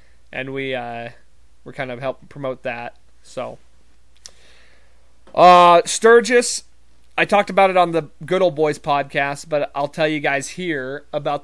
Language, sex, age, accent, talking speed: English, male, 30-49, American, 150 wpm